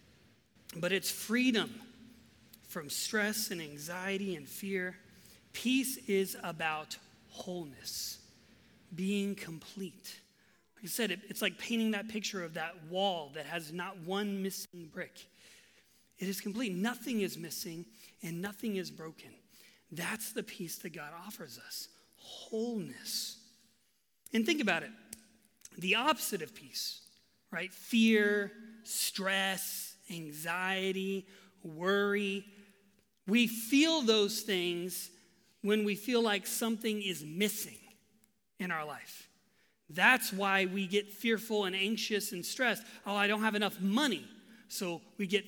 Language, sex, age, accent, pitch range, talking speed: English, male, 30-49, American, 190-225 Hz, 125 wpm